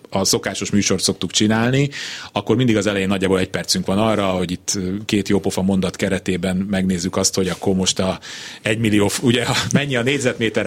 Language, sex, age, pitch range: Hungarian, male, 30-49, 100-120 Hz